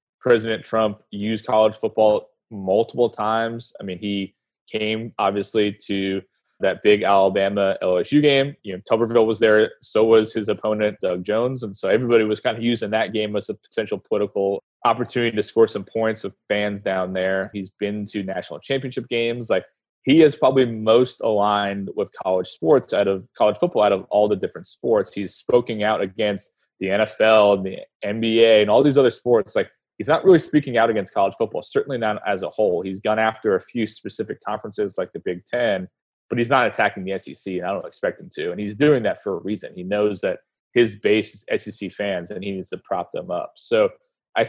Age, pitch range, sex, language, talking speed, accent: 20-39, 100-115 Hz, male, English, 205 wpm, American